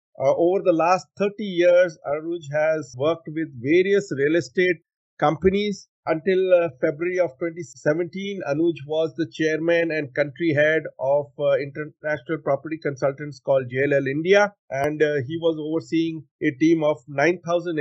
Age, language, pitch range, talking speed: 50-69, English, 145-180 Hz, 145 wpm